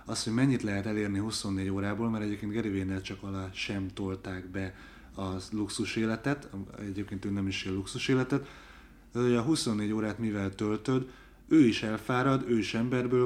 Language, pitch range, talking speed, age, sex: Hungarian, 100-125 Hz, 165 wpm, 30-49, male